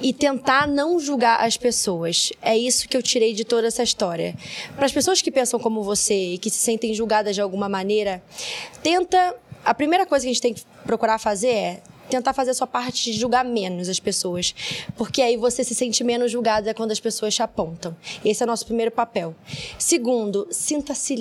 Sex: female